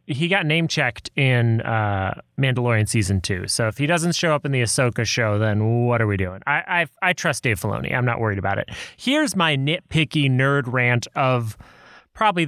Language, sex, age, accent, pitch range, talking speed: English, male, 30-49, American, 120-170 Hz, 200 wpm